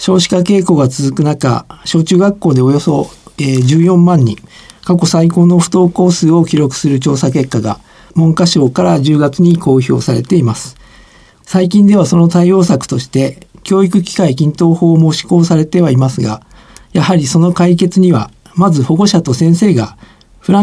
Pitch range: 140-180 Hz